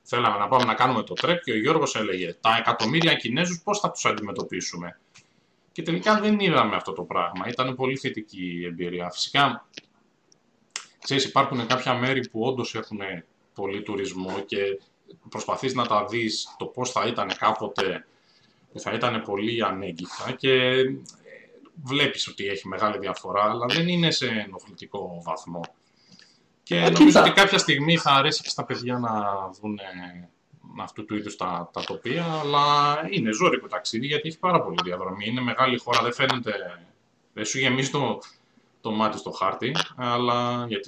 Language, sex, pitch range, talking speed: Greek, male, 105-145 Hz, 160 wpm